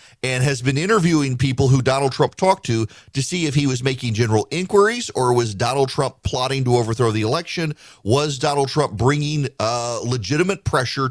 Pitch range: 115-150 Hz